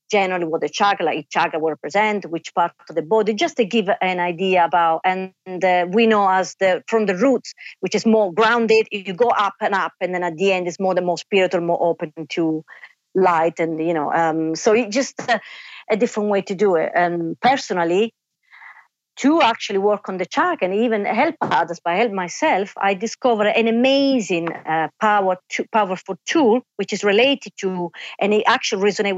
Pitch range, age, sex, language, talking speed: 185-235 Hz, 40-59, female, English, 200 wpm